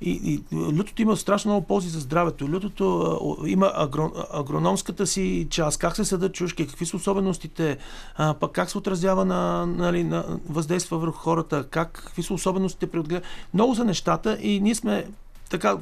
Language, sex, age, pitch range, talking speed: Bulgarian, male, 40-59, 155-195 Hz, 165 wpm